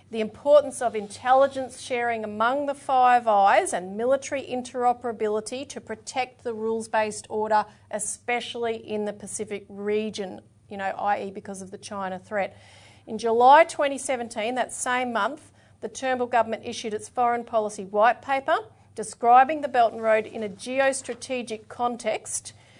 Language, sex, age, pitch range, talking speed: English, female, 40-59, 210-245 Hz, 140 wpm